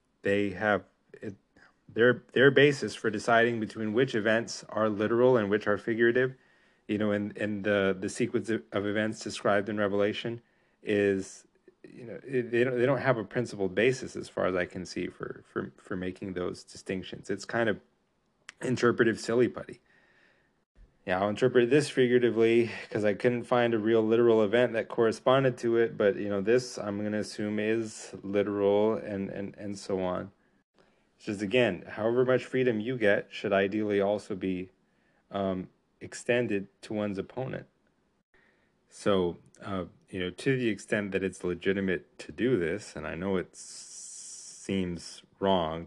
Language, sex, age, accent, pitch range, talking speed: English, male, 30-49, American, 95-115 Hz, 165 wpm